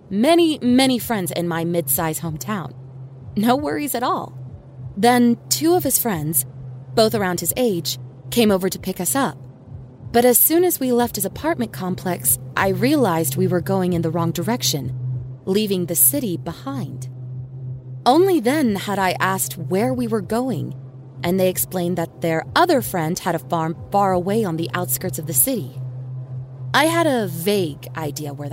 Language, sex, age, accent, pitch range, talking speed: English, female, 20-39, American, 130-215 Hz, 170 wpm